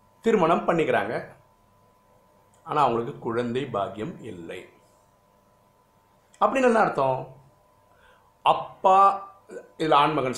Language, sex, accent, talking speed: Tamil, male, native, 75 wpm